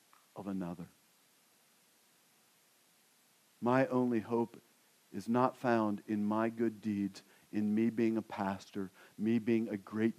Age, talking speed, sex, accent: 50-69, 120 wpm, male, American